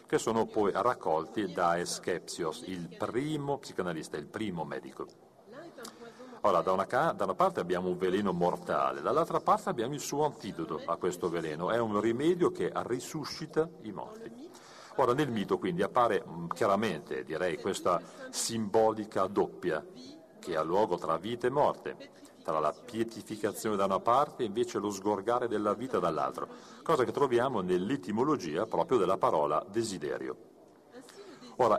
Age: 40-59